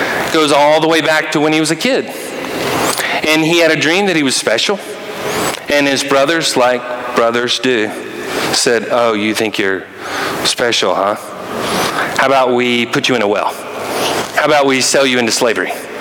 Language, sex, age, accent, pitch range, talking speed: English, male, 40-59, American, 125-155 Hz, 180 wpm